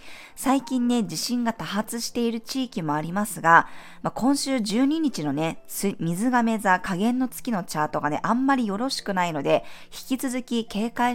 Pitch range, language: 170-255 Hz, Japanese